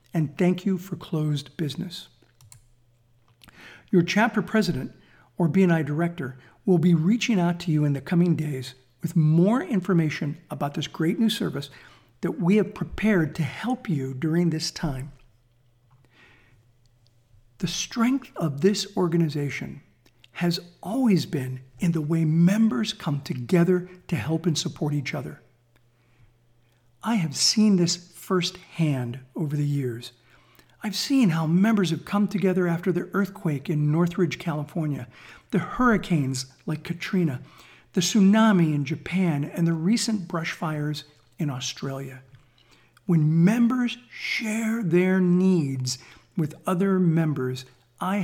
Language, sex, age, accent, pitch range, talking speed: English, male, 50-69, American, 135-185 Hz, 130 wpm